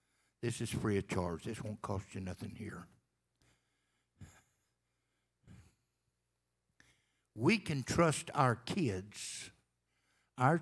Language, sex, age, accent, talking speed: English, male, 60-79, American, 95 wpm